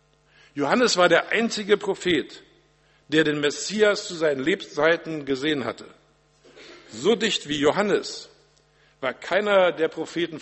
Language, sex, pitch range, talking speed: German, male, 145-175 Hz, 120 wpm